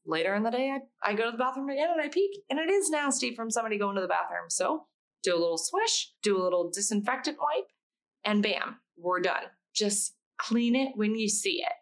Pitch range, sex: 180-255 Hz, female